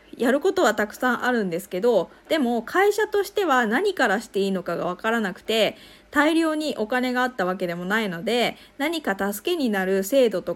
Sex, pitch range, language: female, 195-285 Hz, Japanese